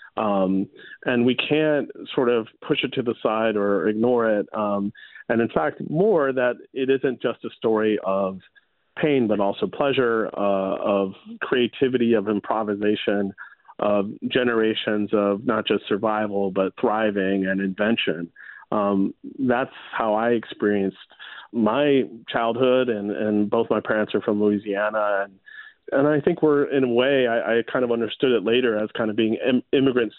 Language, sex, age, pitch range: English, male, 40-59, 105-120 Hz